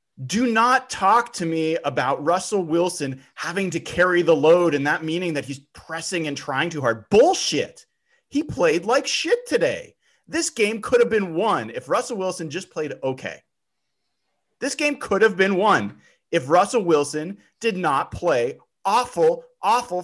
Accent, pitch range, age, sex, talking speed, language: American, 180-280 Hz, 30-49, male, 165 wpm, English